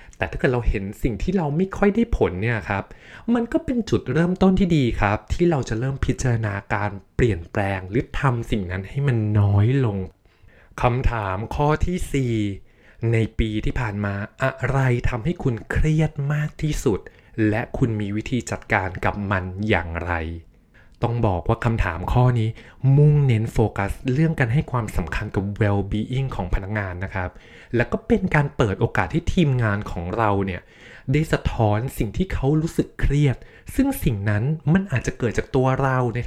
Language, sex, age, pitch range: Thai, male, 20-39, 105-135 Hz